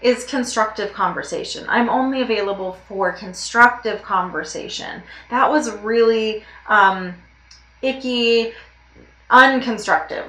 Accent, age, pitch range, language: American, 20-39, 185-245 Hz, English